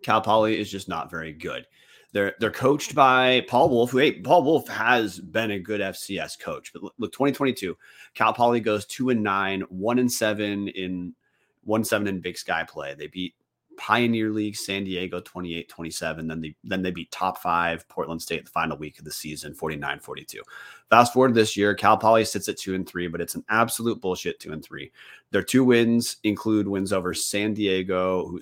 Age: 30-49